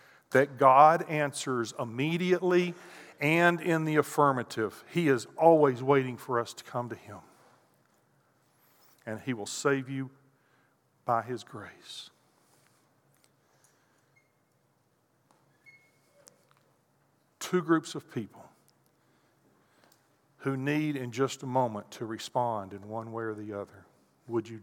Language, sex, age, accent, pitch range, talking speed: English, male, 50-69, American, 120-165 Hz, 110 wpm